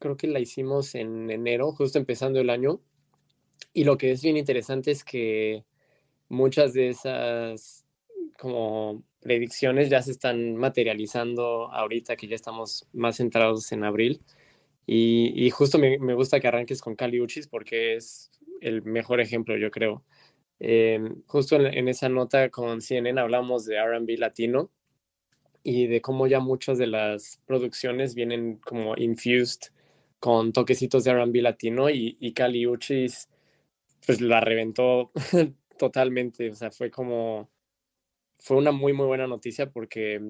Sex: male